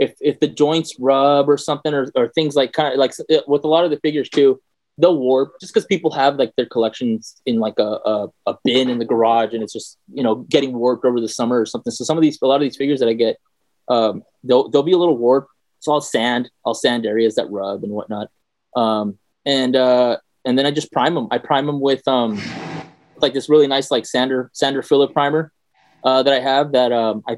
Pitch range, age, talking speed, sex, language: 115-145 Hz, 20-39, 245 wpm, male, English